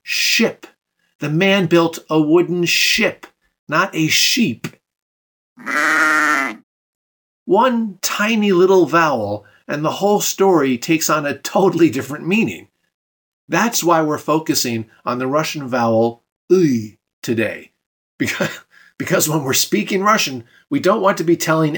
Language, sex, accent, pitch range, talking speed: English, male, American, 125-180 Hz, 120 wpm